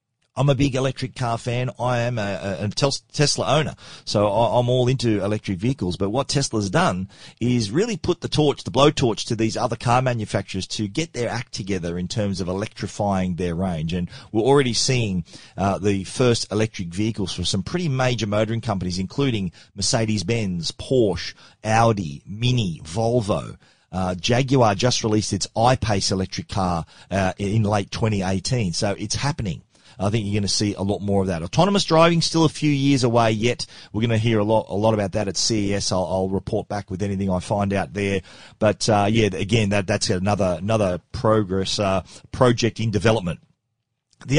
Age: 40-59